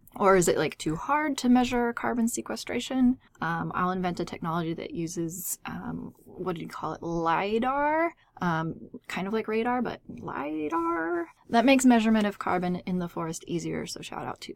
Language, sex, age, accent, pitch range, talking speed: English, female, 20-39, American, 165-210 Hz, 180 wpm